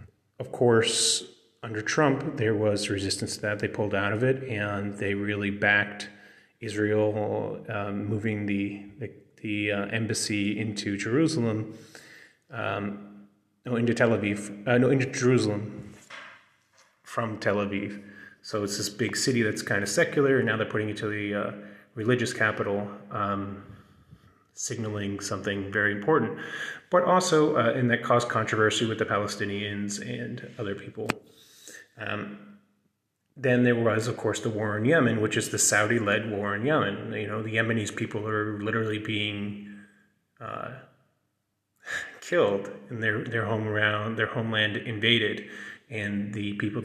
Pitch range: 105-115 Hz